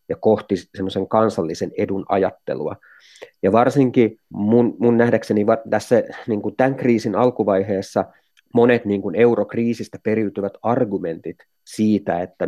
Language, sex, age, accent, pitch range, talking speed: Finnish, male, 30-49, native, 95-110 Hz, 120 wpm